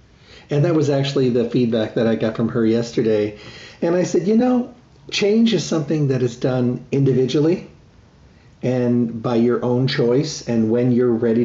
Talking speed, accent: 175 wpm, American